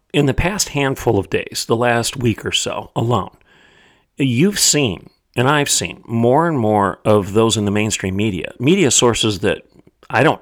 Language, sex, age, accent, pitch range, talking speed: English, male, 40-59, American, 105-130 Hz, 180 wpm